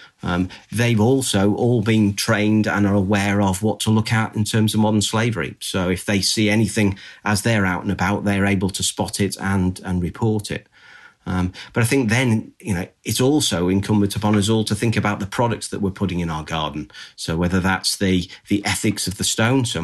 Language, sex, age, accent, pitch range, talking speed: English, male, 40-59, British, 95-110 Hz, 235 wpm